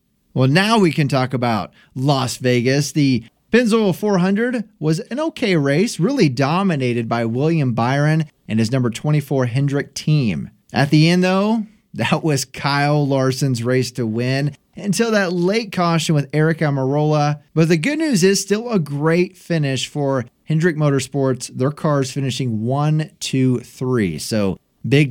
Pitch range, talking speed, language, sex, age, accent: 130-180 Hz, 155 wpm, English, male, 30-49, American